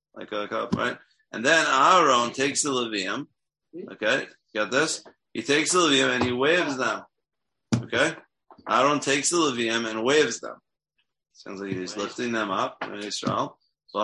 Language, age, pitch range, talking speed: English, 30-49, 110-135 Hz, 155 wpm